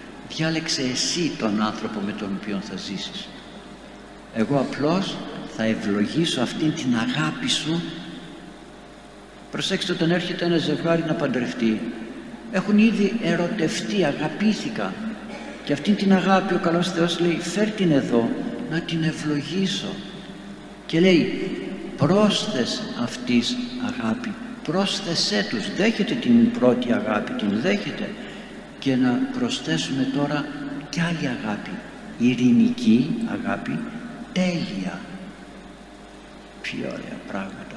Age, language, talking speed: 60-79, Greek, 110 wpm